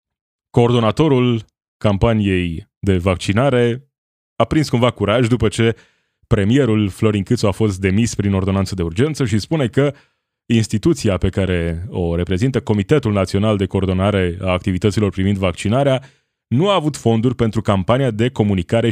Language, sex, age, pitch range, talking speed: Romanian, male, 20-39, 95-125 Hz, 140 wpm